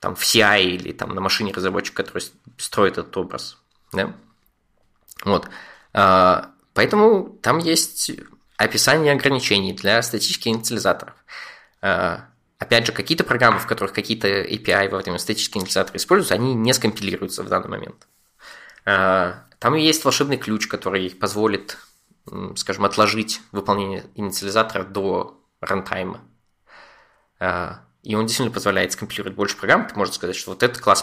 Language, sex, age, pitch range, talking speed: Russian, male, 20-39, 100-130 Hz, 130 wpm